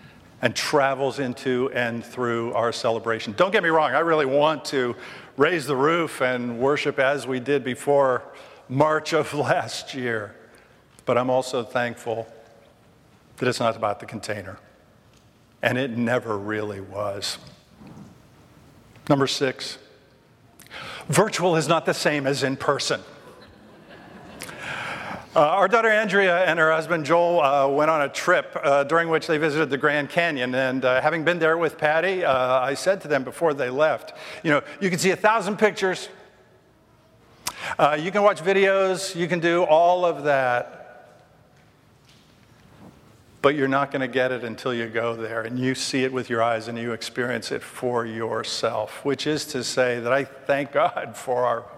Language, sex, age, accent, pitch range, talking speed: English, male, 50-69, American, 120-160 Hz, 165 wpm